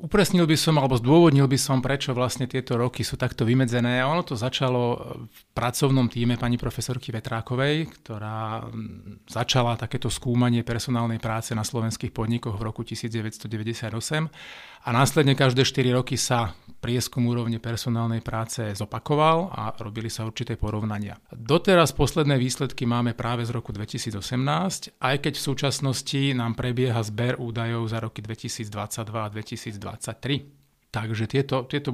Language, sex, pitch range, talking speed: Slovak, male, 110-130 Hz, 140 wpm